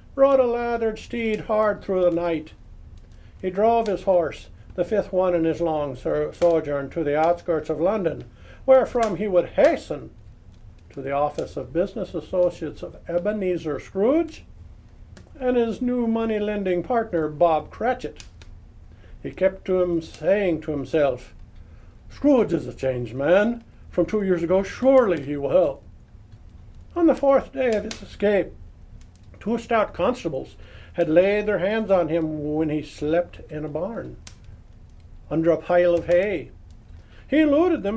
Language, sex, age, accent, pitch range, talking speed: English, male, 60-79, American, 135-210 Hz, 150 wpm